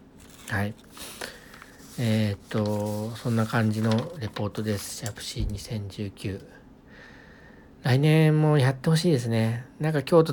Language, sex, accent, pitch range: Japanese, male, native, 110-140 Hz